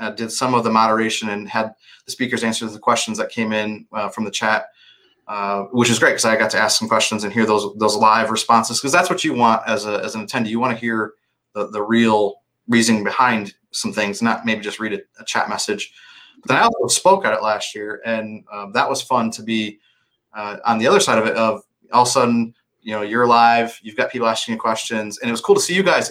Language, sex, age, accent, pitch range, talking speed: English, male, 30-49, American, 110-125 Hz, 255 wpm